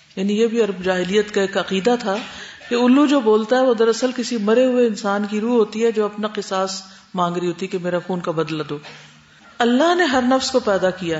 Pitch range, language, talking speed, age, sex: 185-250 Hz, Urdu, 235 wpm, 50-69, female